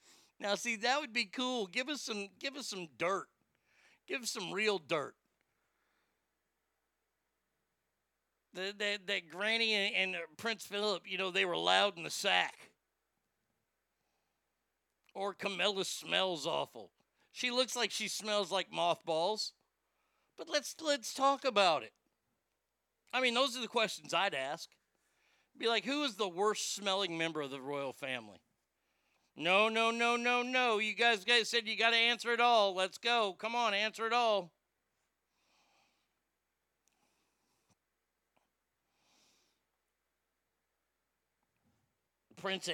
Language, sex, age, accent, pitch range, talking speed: English, male, 50-69, American, 165-230 Hz, 130 wpm